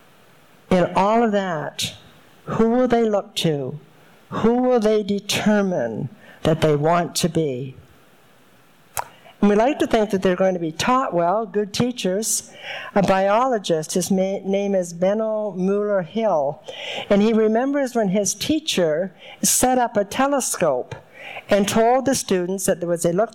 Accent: American